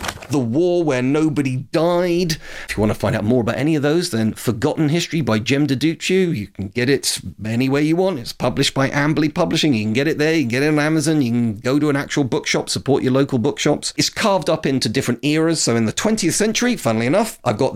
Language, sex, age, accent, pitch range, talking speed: English, male, 40-59, British, 115-155 Hz, 240 wpm